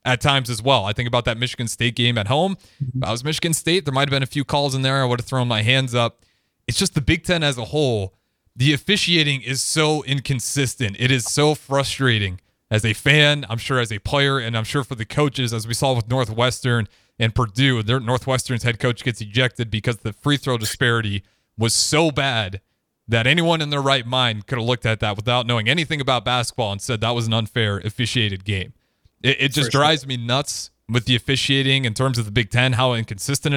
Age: 30-49